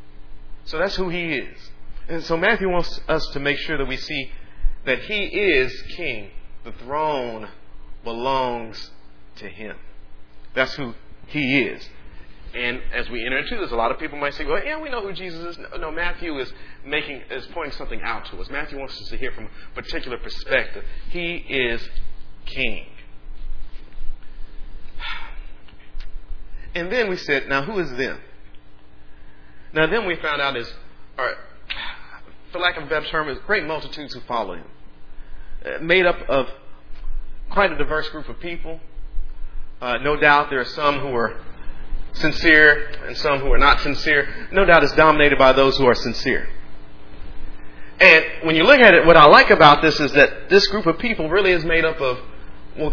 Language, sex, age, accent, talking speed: English, male, 40-59, American, 170 wpm